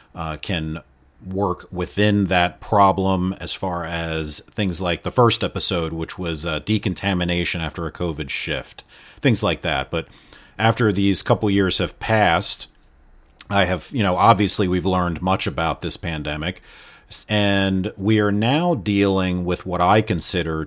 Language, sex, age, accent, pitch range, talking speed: English, male, 40-59, American, 85-100 Hz, 150 wpm